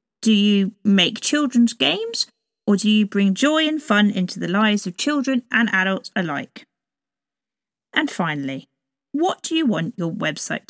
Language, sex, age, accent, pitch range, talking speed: English, female, 40-59, British, 185-260 Hz, 155 wpm